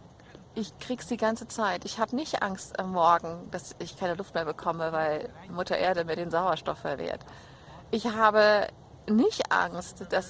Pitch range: 170-220 Hz